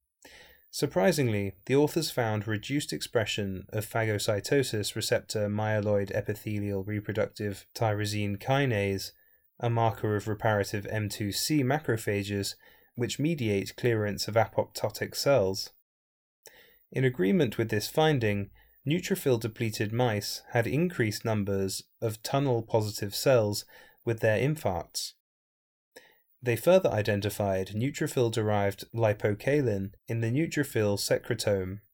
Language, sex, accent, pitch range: English, male, British, 100-125 Hz